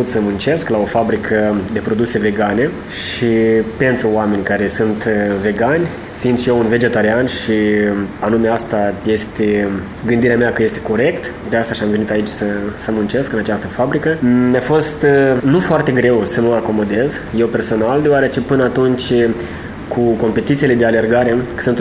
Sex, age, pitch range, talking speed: male, 20-39, 110-125 Hz, 160 wpm